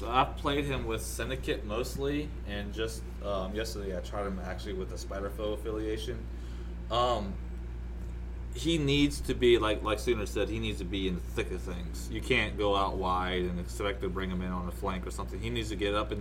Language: English